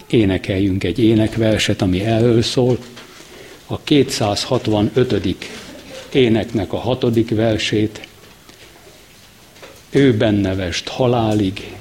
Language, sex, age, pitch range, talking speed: Hungarian, male, 60-79, 105-130 Hz, 75 wpm